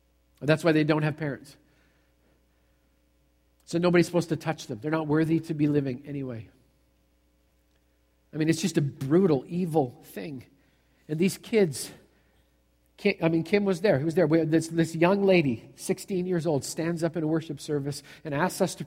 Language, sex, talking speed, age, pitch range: English, male, 175 wpm, 50-69, 125-165 Hz